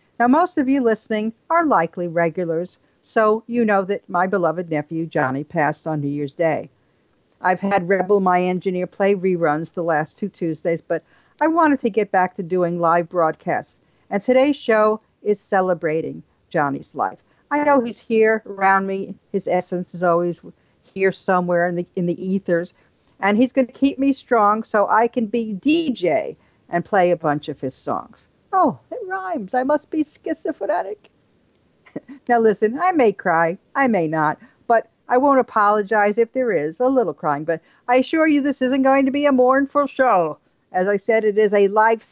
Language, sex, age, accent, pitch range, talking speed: English, female, 50-69, American, 180-255 Hz, 180 wpm